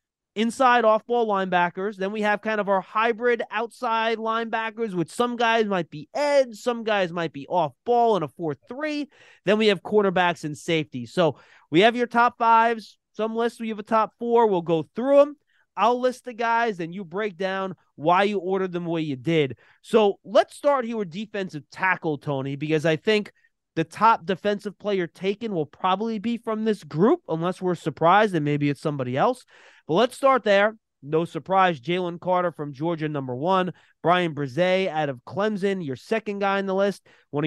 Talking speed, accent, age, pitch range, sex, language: 190 wpm, American, 30-49, 160-220 Hz, male, English